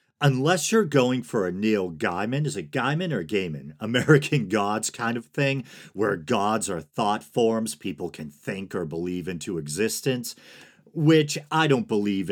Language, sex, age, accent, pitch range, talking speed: English, male, 40-59, American, 100-130 Hz, 160 wpm